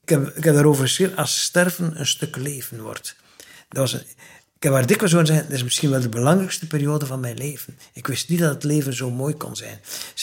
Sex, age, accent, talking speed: male, 60-79, Dutch, 215 wpm